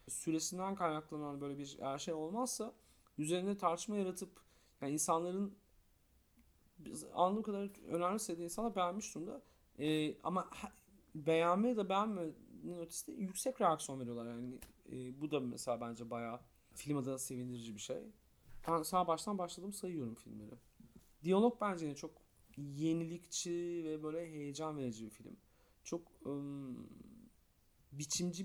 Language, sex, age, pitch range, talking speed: Turkish, male, 40-59, 140-200 Hz, 130 wpm